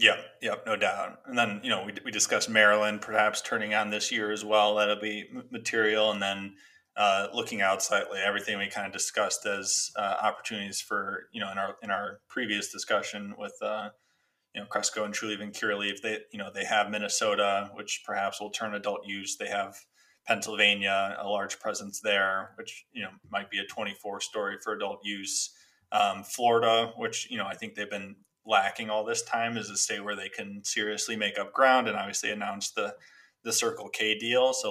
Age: 20-39